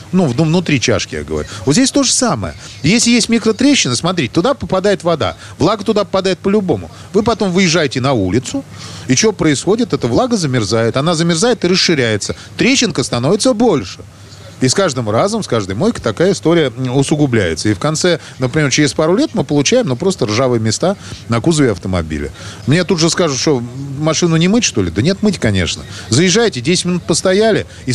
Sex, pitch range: male, 120-185 Hz